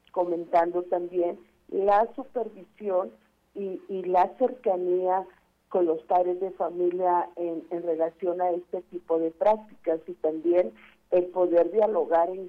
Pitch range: 170-205 Hz